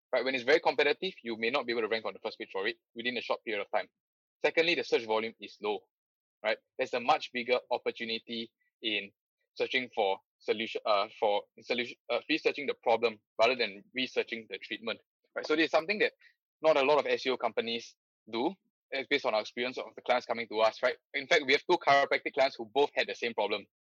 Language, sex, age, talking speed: English, male, 20-39, 225 wpm